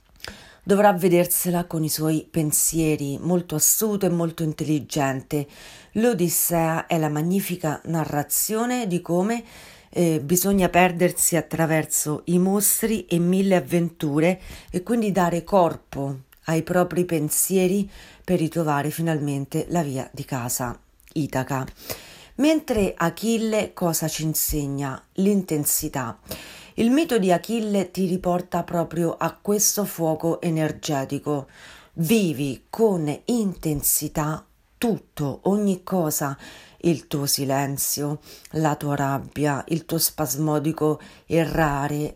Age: 40-59